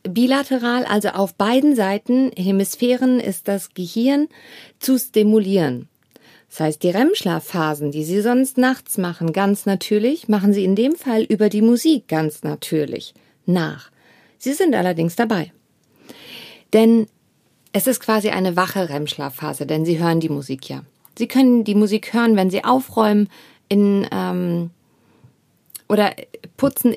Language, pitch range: German, 170-225 Hz